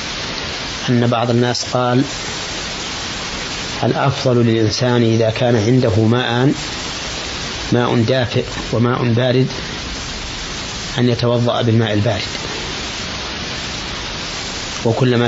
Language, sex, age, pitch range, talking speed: Arabic, male, 30-49, 110-125 Hz, 75 wpm